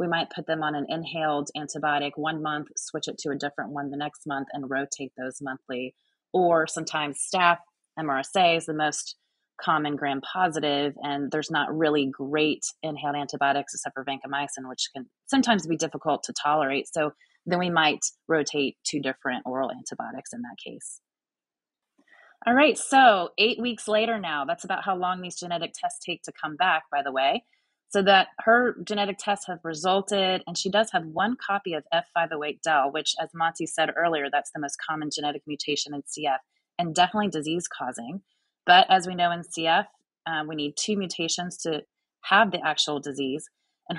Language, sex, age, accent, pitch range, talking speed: English, female, 30-49, American, 145-190 Hz, 185 wpm